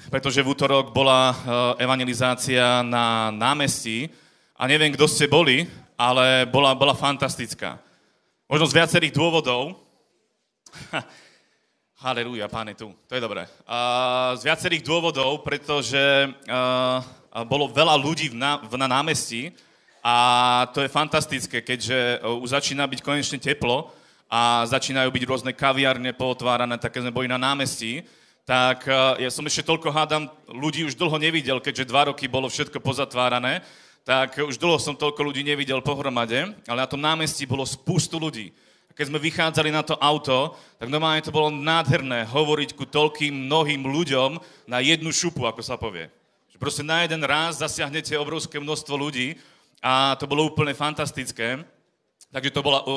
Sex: male